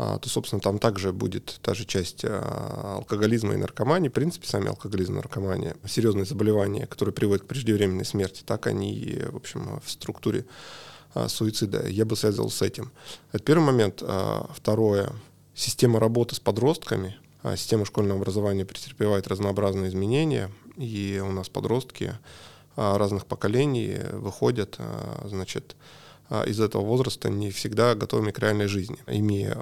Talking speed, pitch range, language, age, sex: 140 wpm, 100-120 Hz, Russian, 20-39, male